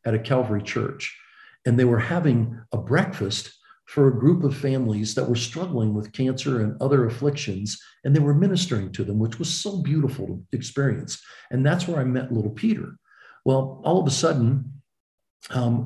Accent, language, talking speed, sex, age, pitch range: American, English, 180 wpm, male, 50-69, 120-145 Hz